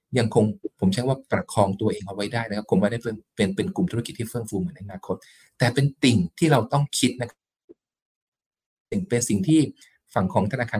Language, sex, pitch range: Thai, male, 100-135 Hz